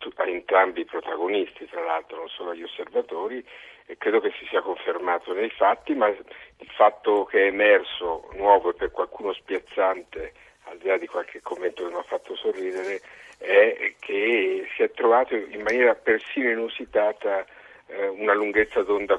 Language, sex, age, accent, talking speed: Italian, male, 50-69, native, 165 wpm